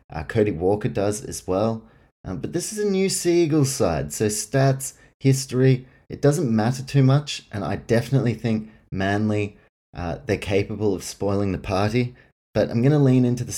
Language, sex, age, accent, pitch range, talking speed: English, male, 30-49, Australian, 100-125 Hz, 180 wpm